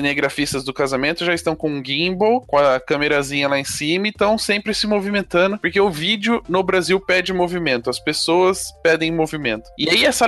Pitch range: 150-200 Hz